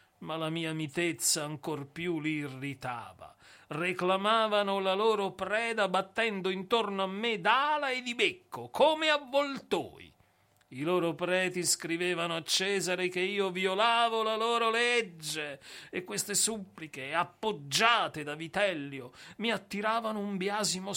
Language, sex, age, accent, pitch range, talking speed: Italian, male, 40-59, native, 130-185 Hz, 125 wpm